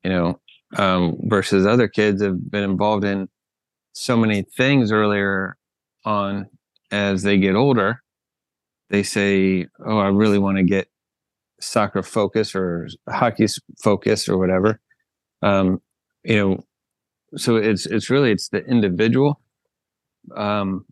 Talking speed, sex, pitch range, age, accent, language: 130 wpm, male, 95-110 Hz, 30-49, American, English